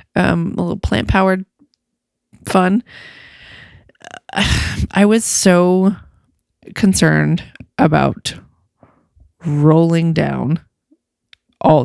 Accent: American